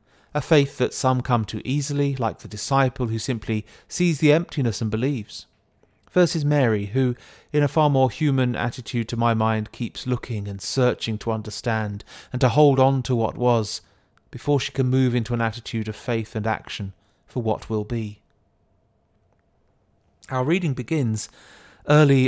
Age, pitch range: 30-49, 110-130 Hz